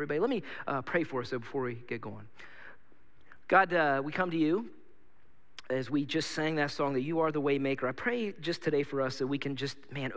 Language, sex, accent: English, male, American